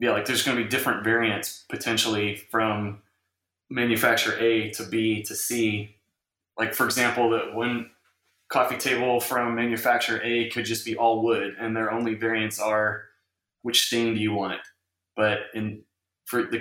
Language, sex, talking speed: English, male, 165 wpm